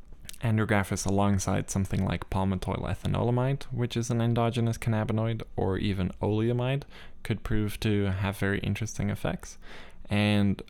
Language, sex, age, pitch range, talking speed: English, male, 10-29, 95-110 Hz, 120 wpm